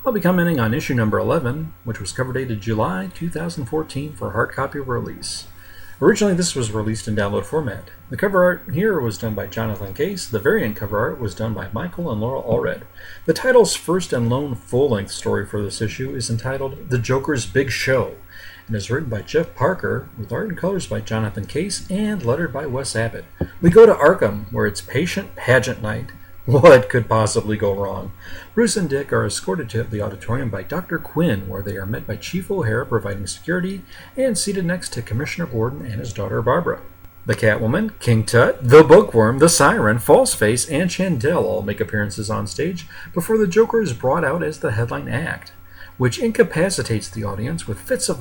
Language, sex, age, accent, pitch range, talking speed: English, male, 40-59, American, 105-160 Hz, 195 wpm